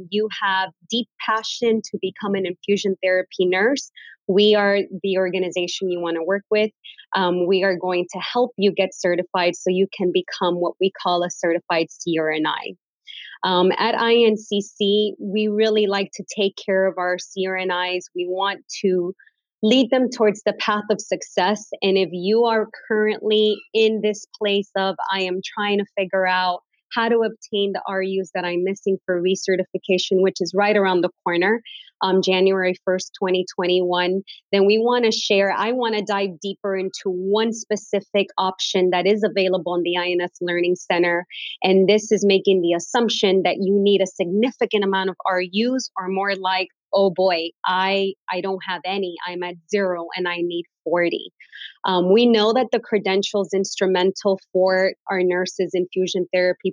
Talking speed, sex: 170 wpm, female